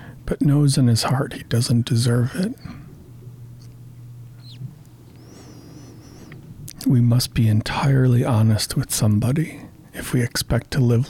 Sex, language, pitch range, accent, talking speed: male, English, 115-140 Hz, American, 115 wpm